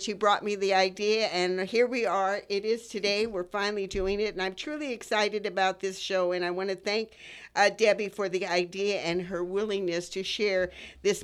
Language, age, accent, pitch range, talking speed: English, 50-69, American, 185-220 Hz, 210 wpm